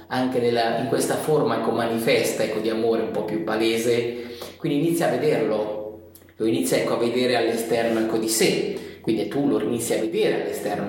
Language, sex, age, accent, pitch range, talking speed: Italian, male, 30-49, native, 110-160 Hz, 185 wpm